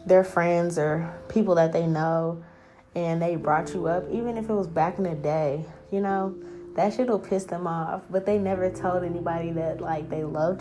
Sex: female